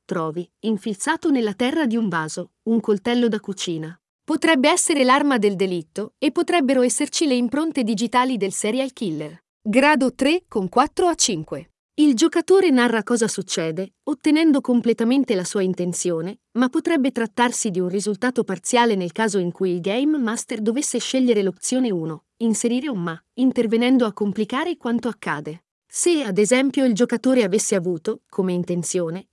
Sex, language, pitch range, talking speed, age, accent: female, Italian, 195-275 Hz, 155 wpm, 40-59, native